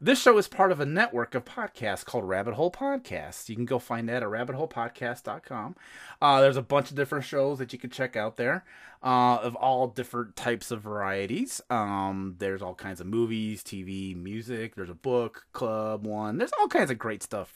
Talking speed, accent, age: 200 wpm, American, 30-49